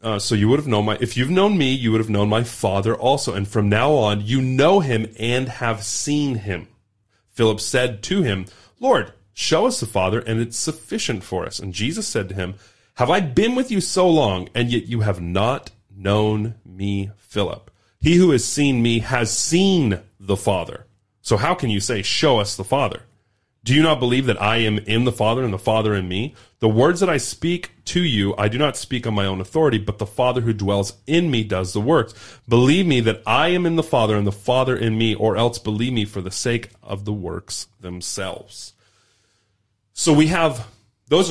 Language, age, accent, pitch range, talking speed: English, 30-49, American, 105-130 Hz, 215 wpm